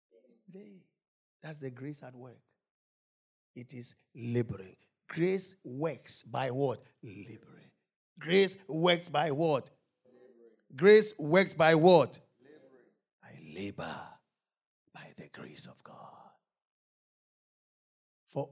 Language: English